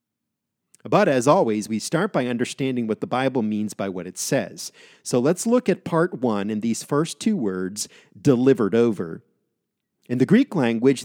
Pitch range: 115-165 Hz